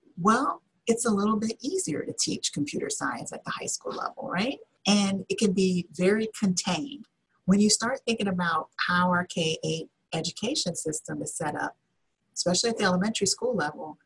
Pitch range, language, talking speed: 165-205 Hz, English, 175 wpm